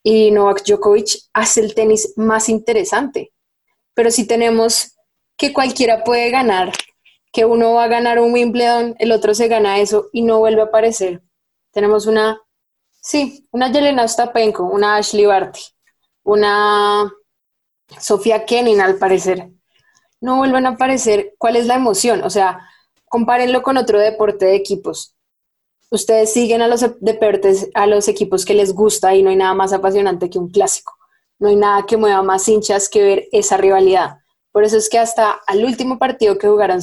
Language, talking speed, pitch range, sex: Spanish, 170 wpm, 200-235 Hz, female